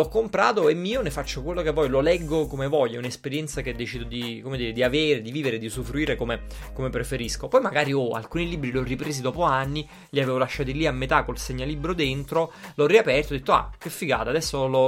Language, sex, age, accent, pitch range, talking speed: Italian, male, 30-49, native, 135-190 Hz, 240 wpm